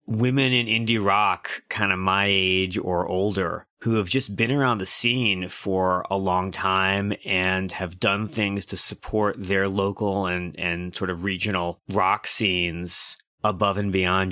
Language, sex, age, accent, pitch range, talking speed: English, male, 30-49, American, 90-105 Hz, 165 wpm